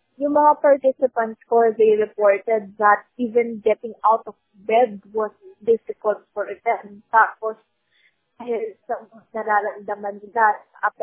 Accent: native